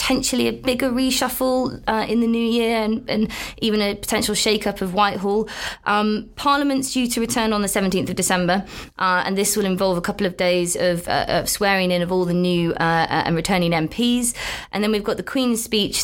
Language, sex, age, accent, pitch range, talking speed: English, female, 20-39, British, 170-200 Hz, 210 wpm